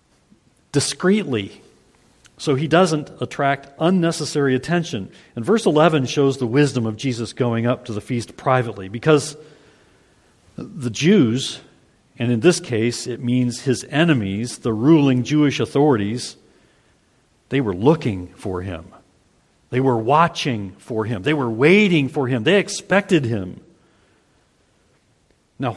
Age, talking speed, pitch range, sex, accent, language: 50-69, 130 wpm, 120-160 Hz, male, American, English